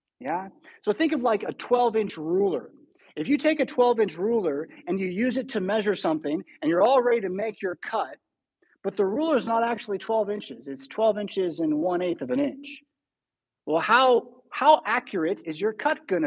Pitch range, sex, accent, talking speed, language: 180-265 Hz, male, American, 195 wpm, English